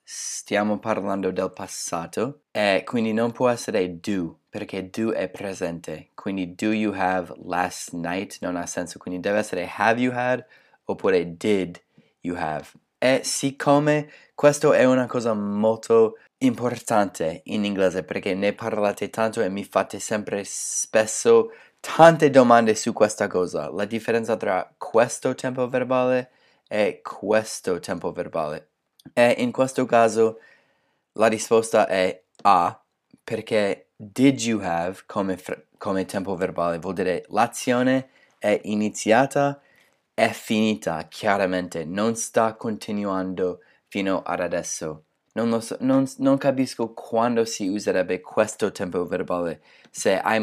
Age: 20-39